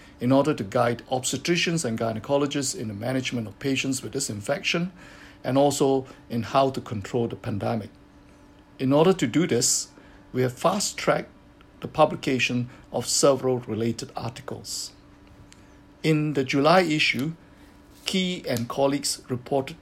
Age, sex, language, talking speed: 60-79, male, English, 135 wpm